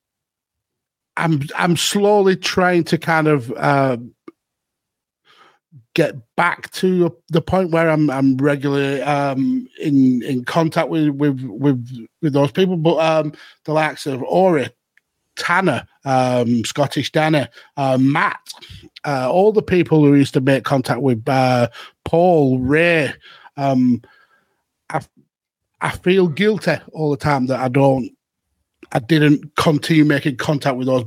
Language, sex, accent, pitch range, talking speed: English, male, British, 135-160 Hz, 135 wpm